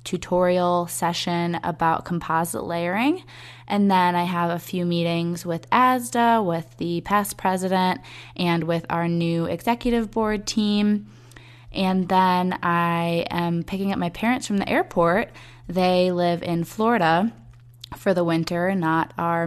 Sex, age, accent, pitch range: female, 20-39, American, 165-185 Hz